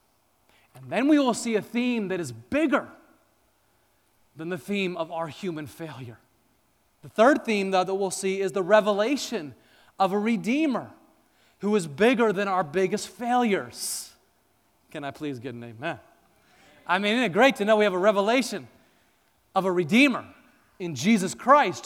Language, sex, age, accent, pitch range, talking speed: English, male, 30-49, American, 170-225 Hz, 165 wpm